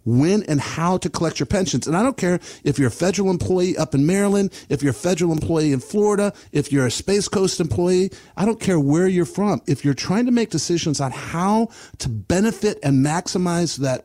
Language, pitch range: English, 145-200 Hz